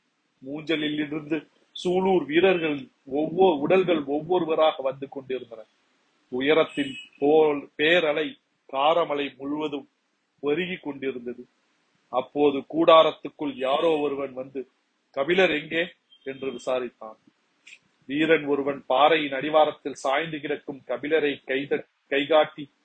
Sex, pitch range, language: male, 135-165 Hz, Tamil